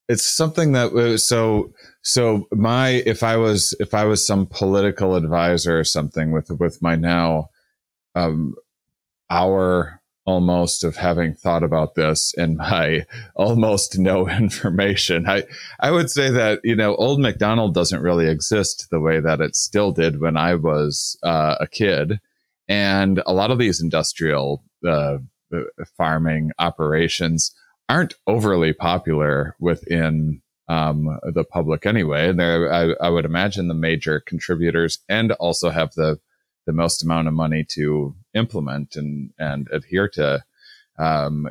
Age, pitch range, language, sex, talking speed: 30-49, 80-100 Hz, English, male, 145 wpm